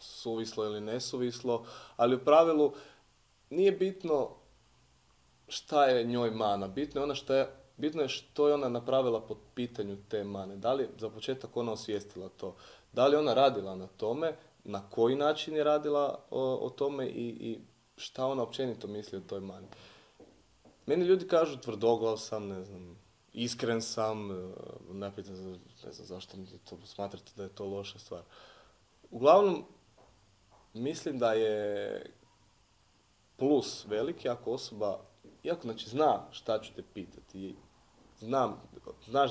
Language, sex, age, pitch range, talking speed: Croatian, male, 30-49, 105-130 Hz, 140 wpm